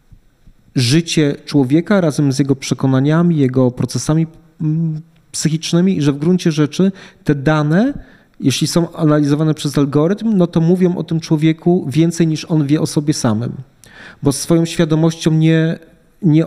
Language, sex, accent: Polish, male, native